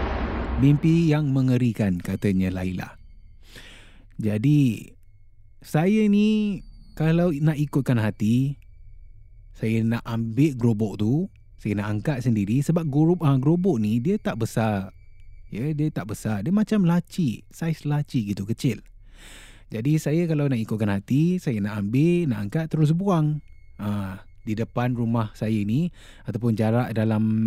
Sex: male